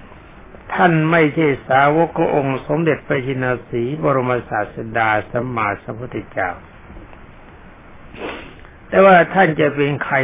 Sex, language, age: male, Thai, 60-79